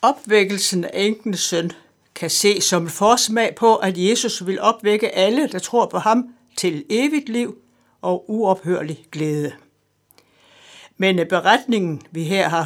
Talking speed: 135 wpm